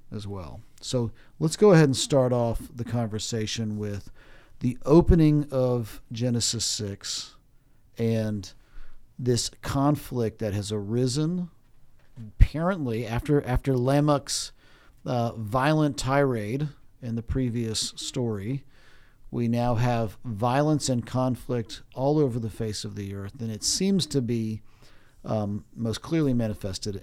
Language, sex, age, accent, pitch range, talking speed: English, male, 40-59, American, 105-135 Hz, 125 wpm